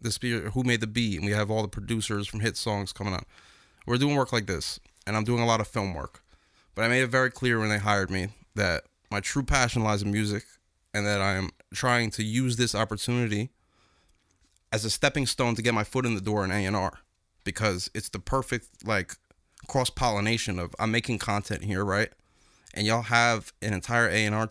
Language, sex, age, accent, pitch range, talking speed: English, male, 30-49, American, 100-120 Hz, 205 wpm